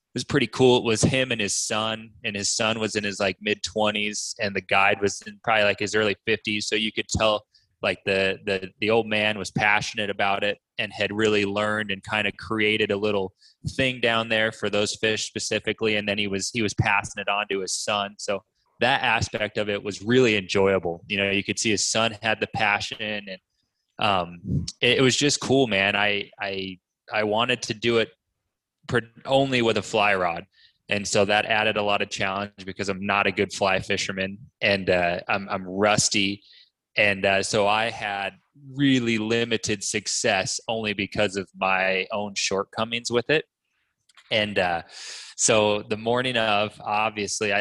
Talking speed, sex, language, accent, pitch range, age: 190 wpm, male, English, American, 100-115 Hz, 20-39